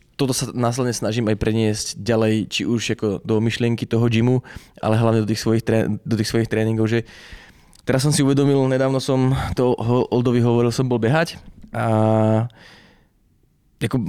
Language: Czech